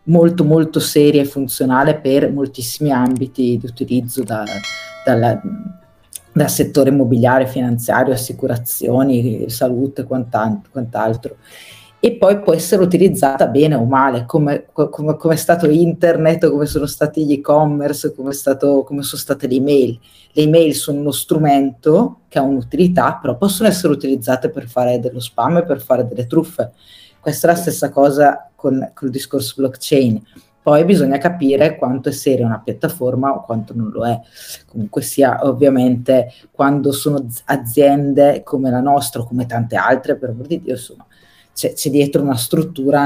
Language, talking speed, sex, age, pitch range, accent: Italian, 155 wpm, female, 30-49, 125-150 Hz, native